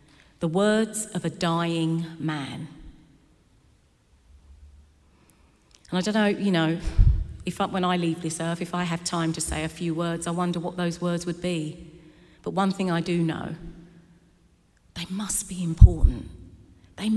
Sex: female